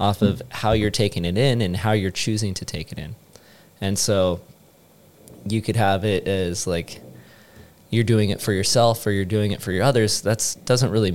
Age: 20-39